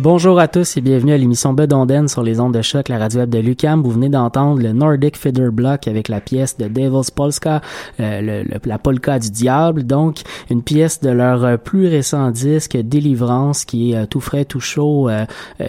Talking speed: 215 wpm